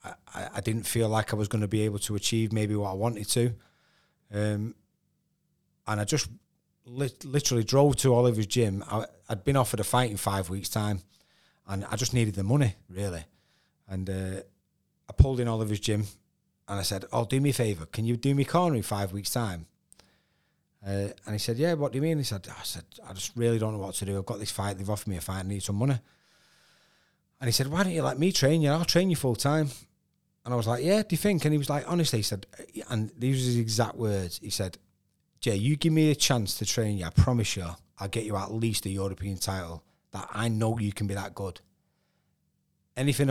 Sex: male